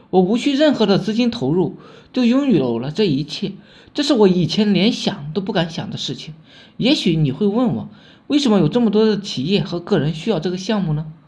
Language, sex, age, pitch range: Chinese, male, 20-39, 170-245 Hz